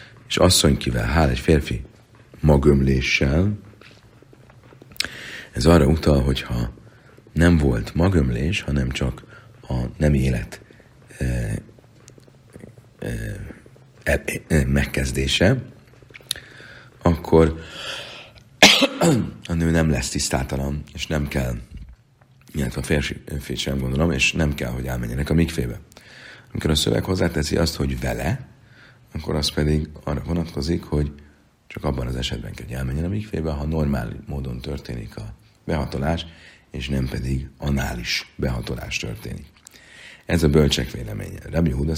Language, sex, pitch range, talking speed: Hungarian, male, 65-85 Hz, 120 wpm